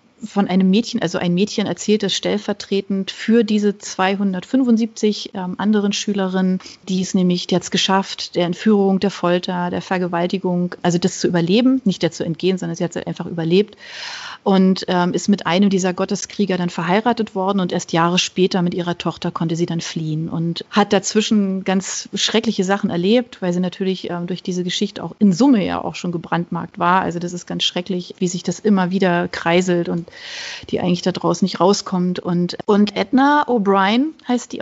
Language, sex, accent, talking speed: German, female, German, 185 wpm